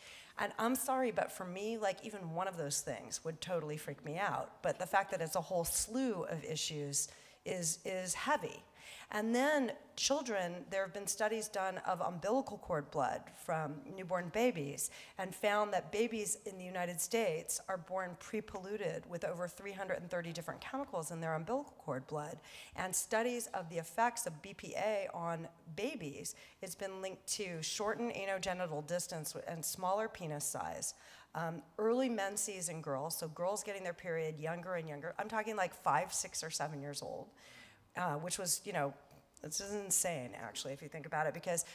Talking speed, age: 175 wpm, 40-59